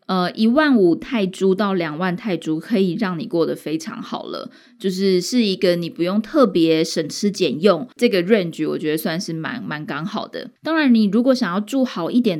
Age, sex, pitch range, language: 20-39, female, 175-240 Hz, Chinese